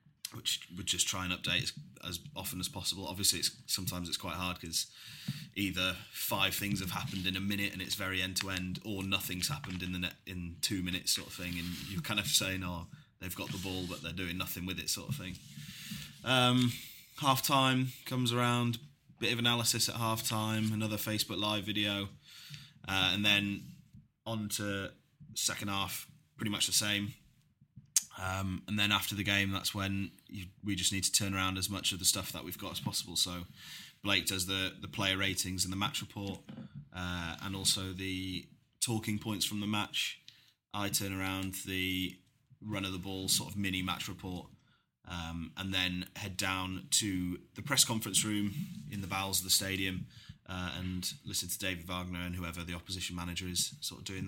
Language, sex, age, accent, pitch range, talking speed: English, male, 20-39, British, 90-105 Hz, 195 wpm